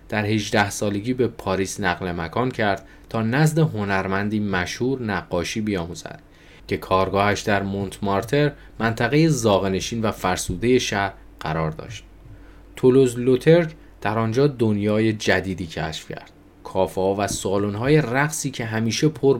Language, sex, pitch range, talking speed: Persian, male, 95-120 Hz, 125 wpm